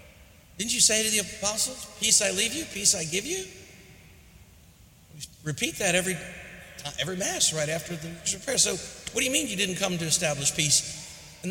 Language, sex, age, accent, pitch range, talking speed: English, male, 50-69, American, 130-175 Hz, 180 wpm